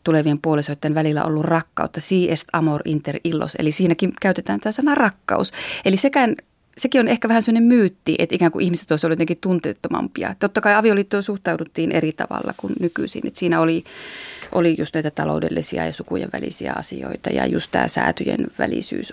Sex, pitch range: female, 155-195 Hz